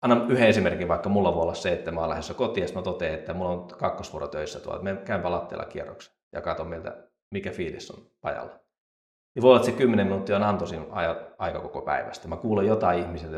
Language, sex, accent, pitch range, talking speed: Finnish, male, native, 85-100 Hz, 225 wpm